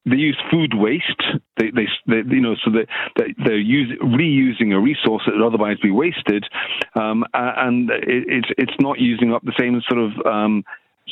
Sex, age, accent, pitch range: male, 50-69, British, 115-145 Hz